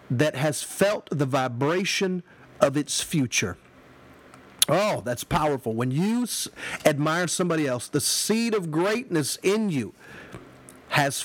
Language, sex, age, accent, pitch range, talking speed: English, male, 50-69, American, 135-175 Hz, 125 wpm